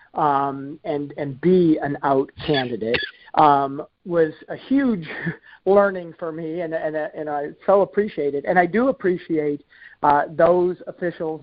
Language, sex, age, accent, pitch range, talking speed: English, male, 50-69, American, 145-180 Hz, 145 wpm